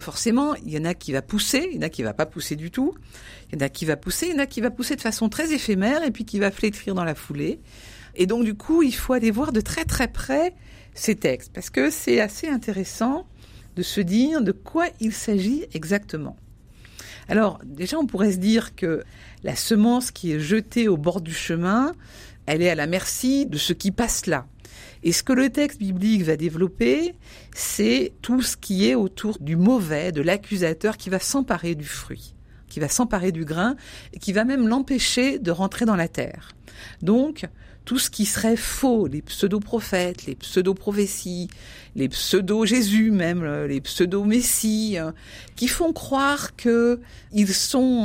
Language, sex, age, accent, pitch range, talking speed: French, female, 50-69, French, 165-240 Hz, 195 wpm